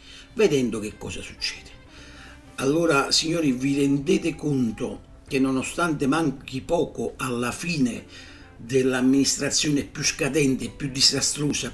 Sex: male